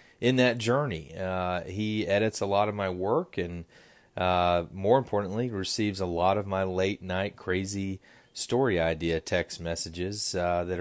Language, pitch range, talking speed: English, 85-105 Hz, 160 wpm